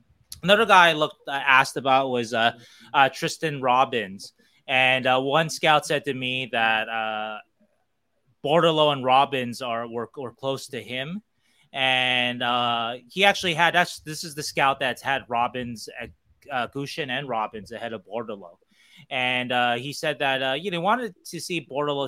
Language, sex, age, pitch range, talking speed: English, male, 20-39, 110-140 Hz, 170 wpm